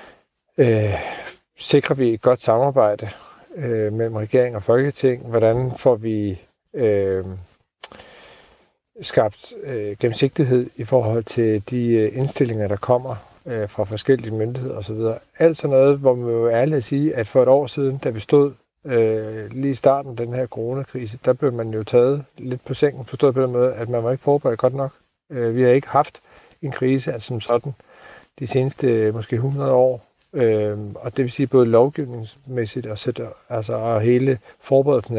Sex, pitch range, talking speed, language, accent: male, 115-135 Hz, 175 wpm, Danish, native